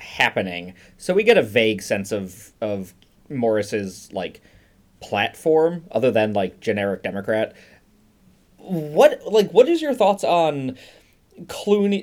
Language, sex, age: English, male, 20-39